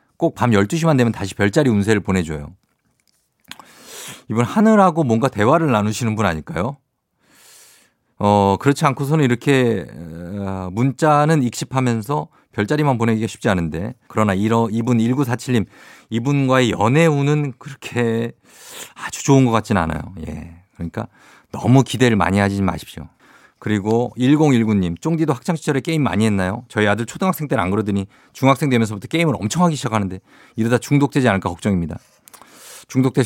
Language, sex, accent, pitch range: Korean, male, native, 100-140 Hz